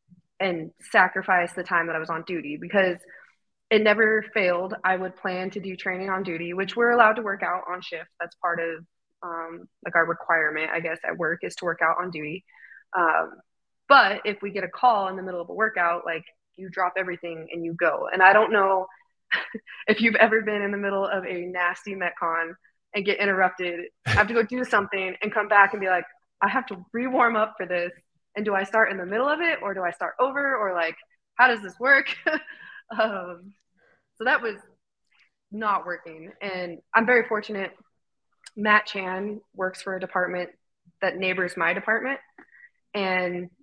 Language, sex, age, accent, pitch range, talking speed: English, female, 20-39, American, 180-210 Hz, 195 wpm